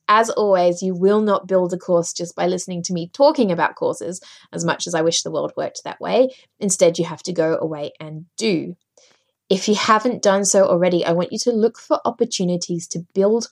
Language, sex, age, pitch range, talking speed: English, female, 20-39, 175-215 Hz, 220 wpm